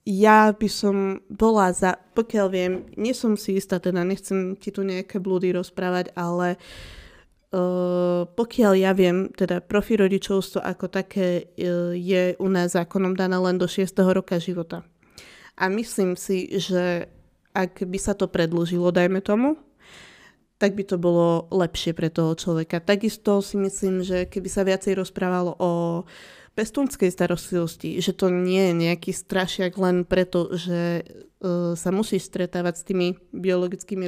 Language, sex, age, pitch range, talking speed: Slovak, female, 20-39, 180-195 Hz, 145 wpm